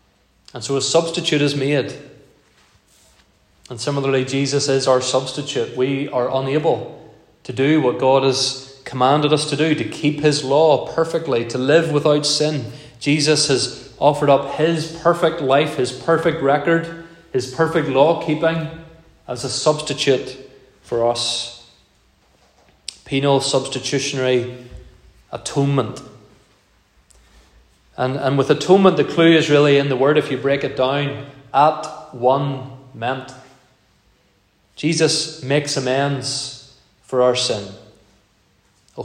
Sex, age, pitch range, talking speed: male, 30-49, 130-150 Hz, 125 wpm